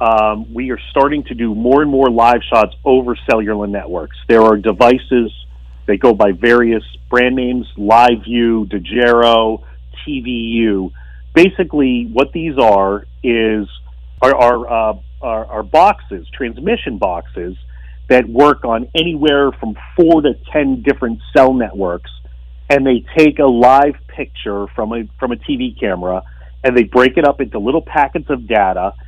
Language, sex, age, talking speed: English, male, 40-59, 150 wpm